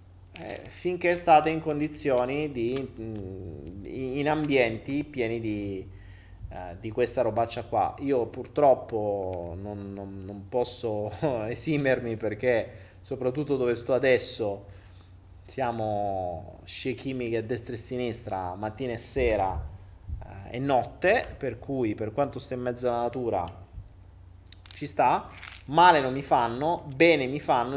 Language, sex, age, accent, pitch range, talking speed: Italian, male, 20-39, native, 100-140 Hz, 130 wpm